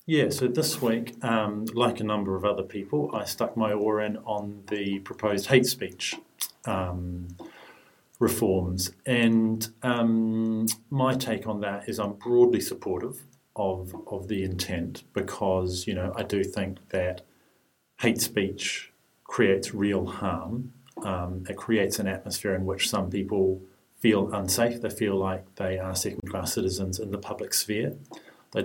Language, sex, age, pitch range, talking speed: English, male, 40-59, 95-110 Hz, 150 wpm